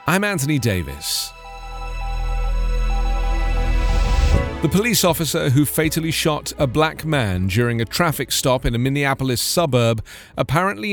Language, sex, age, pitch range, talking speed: English, male, 40-59, 110-160 Hz, 115 wpm